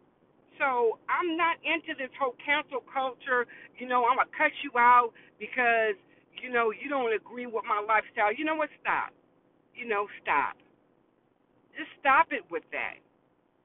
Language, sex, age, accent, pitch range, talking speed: English, female, 50-69, American, 220-300 Hz, 165 wpm